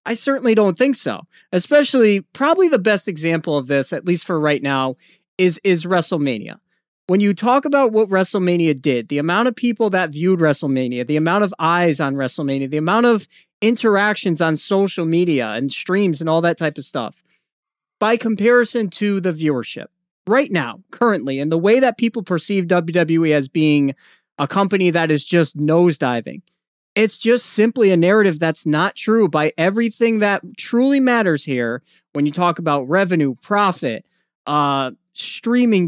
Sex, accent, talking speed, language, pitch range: male, American, 165 wpm, English, 160-220 Hz